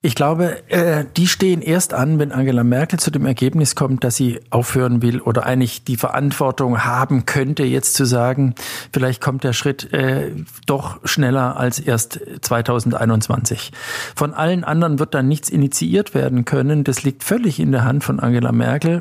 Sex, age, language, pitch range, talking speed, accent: male, 50-69, German, 130-160 Hz, 165 wpm, German